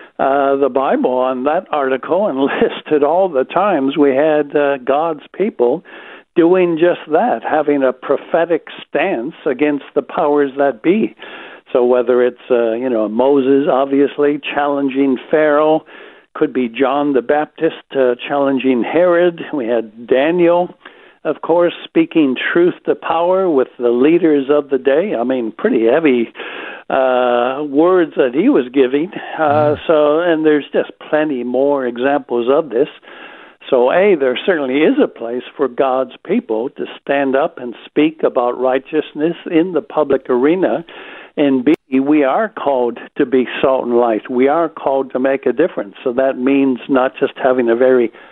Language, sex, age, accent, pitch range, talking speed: English, male, 60-79, American, 130-155 Hz, 160 wpm